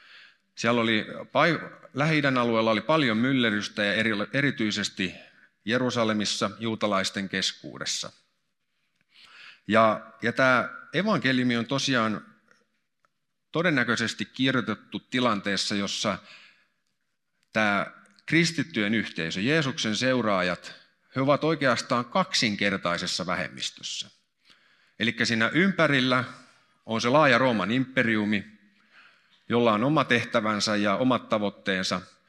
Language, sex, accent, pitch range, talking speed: Finnish, male, native, 105-130 Hz, 85 wpm